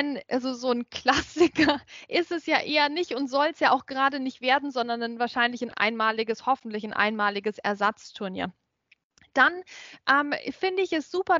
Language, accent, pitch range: German, German, 230-285 Hz